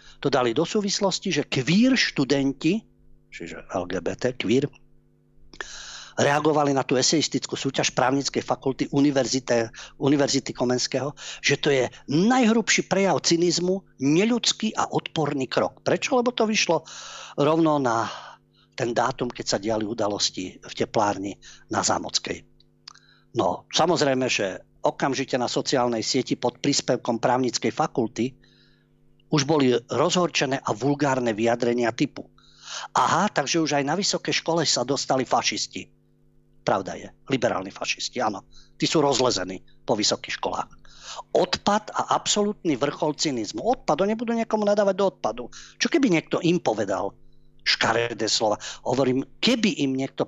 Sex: male